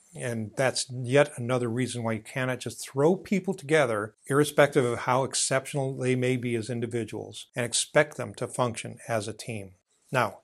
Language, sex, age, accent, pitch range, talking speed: English, male, 50-69, American, 115-135 Hz, 170 wpm